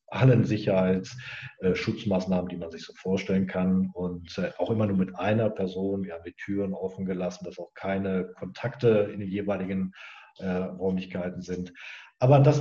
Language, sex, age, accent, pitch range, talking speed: German, male, 40-59, German, 95-125 Hz, 165 wpm